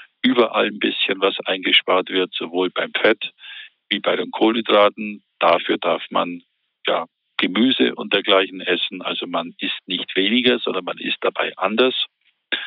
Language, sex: German, male